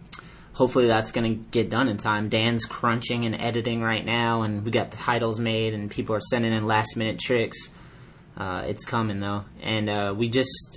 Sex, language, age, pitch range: male, English, 20-39, 115-135 Hz